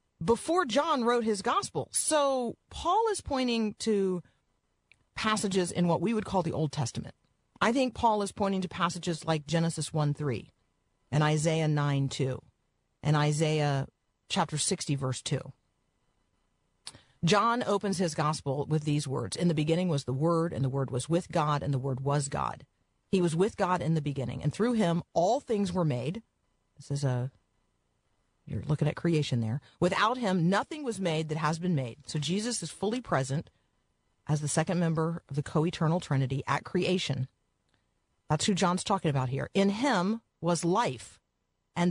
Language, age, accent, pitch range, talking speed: English, 40-59, American, 145-185 Hz, 175 wpm